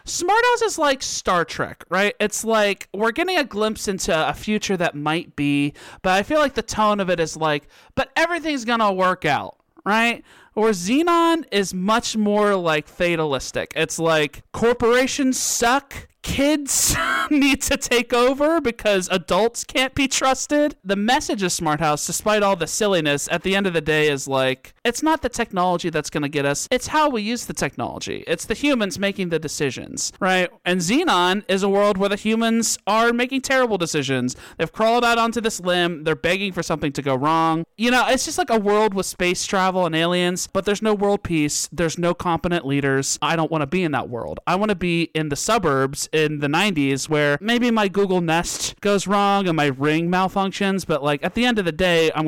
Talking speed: 205 wpm